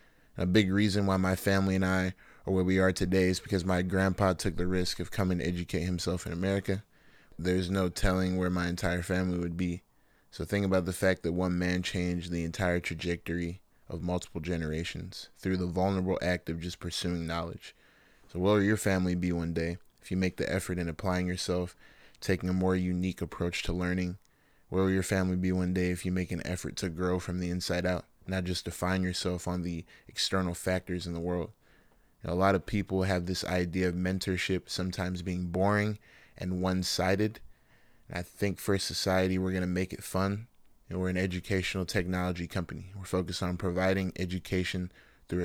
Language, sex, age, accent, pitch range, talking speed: English, male, 20-39, American, 90-95 Hz, 200 wpm